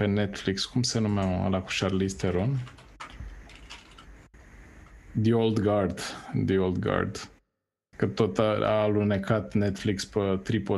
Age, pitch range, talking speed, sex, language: 20-39, 95-115 Hz, 110 wpm, male, Romanian